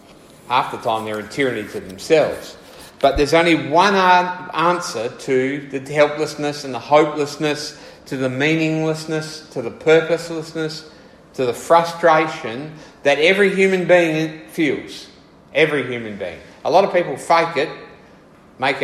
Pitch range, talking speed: 130-165 Hz, 135 wpm